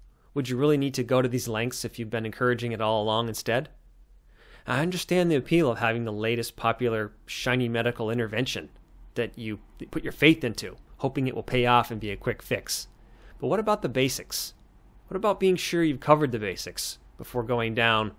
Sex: male